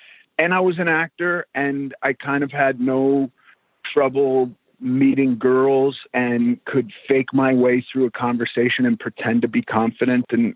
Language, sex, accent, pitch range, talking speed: English, male, American, 115-135 Hz, 160 wpm